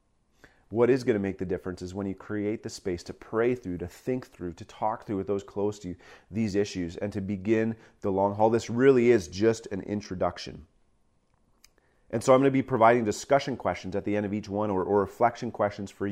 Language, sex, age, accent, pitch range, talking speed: English, male, 30-49, American, 95-115 Hz, 225 wpm